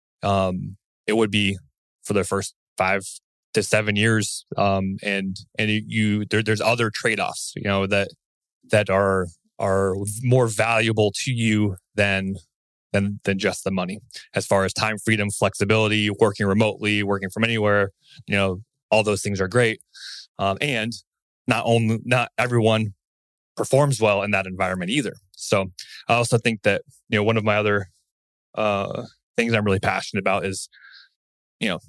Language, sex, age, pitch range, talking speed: English, male, 20-39, 100-115 Hz, 160 wpm